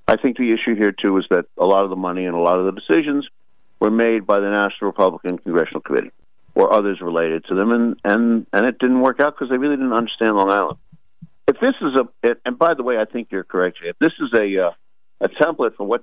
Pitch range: 95-125 Hz